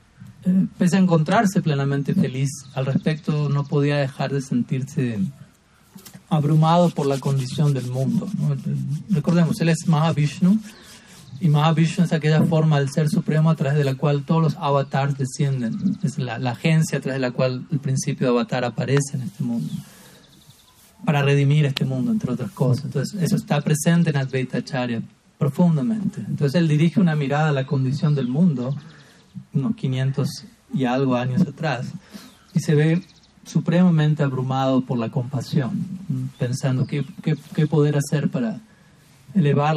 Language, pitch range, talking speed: Spanish, 140-170 Hz, 155 wpm